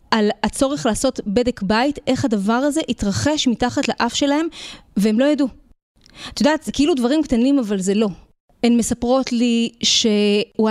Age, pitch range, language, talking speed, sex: 20-39, 220-290 Hz, Hebrew, 155 wpm, female